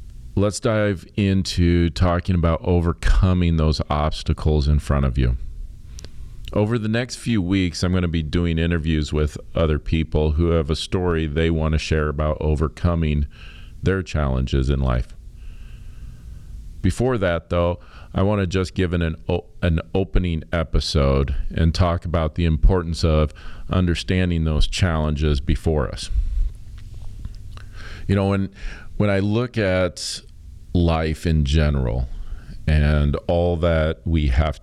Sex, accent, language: male, American, English